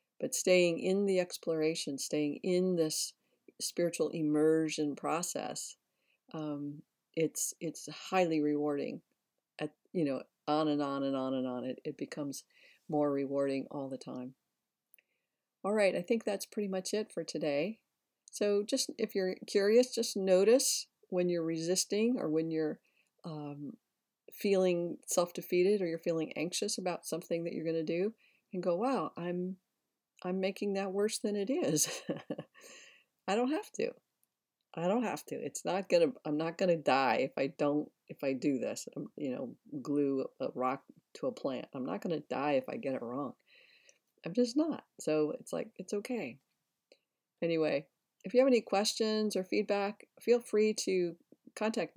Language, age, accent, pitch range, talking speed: English, 50-69, American, 150-210 Hz, 165 wpm